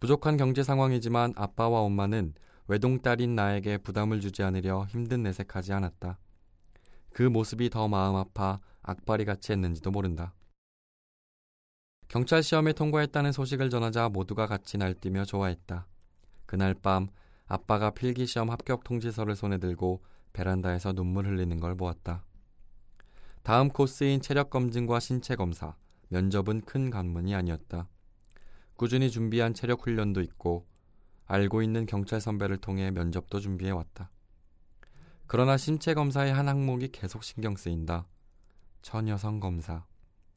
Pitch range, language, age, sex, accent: 90-115 Hz, Korean, 20-39, male, native